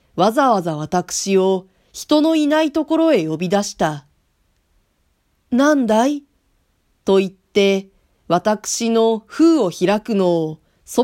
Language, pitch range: Japanese, 175-255 Hz